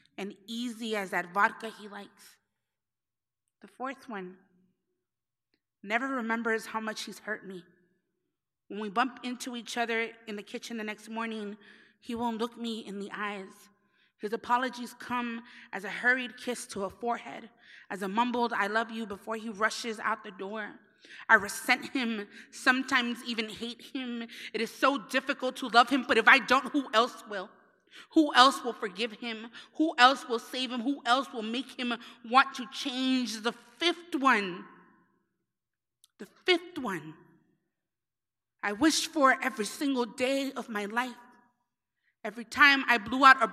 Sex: female